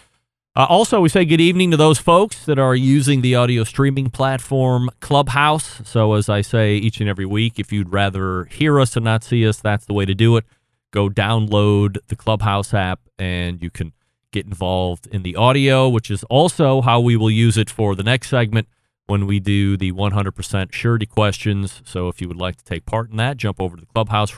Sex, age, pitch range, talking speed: male, 30-49, 105-145 Hz, 215 wpm